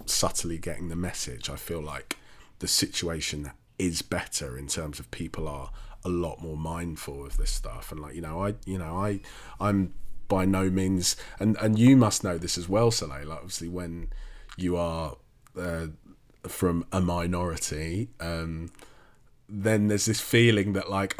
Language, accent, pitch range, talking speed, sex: English, British, 85-100 Hz, 170 wpm, male